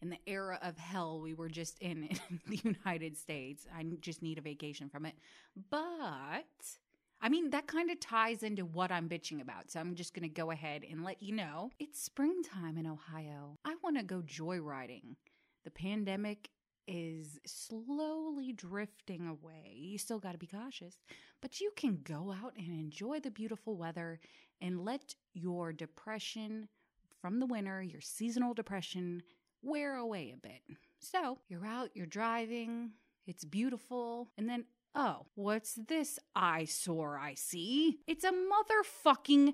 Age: 20-39